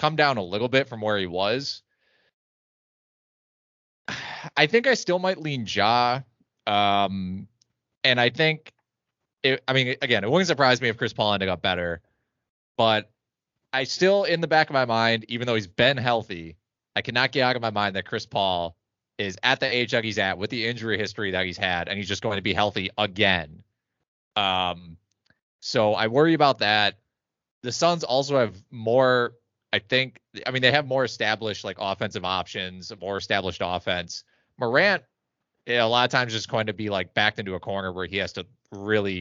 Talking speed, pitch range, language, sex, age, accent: 195 wpm, 95-125 Hz, English, male, 20-39, American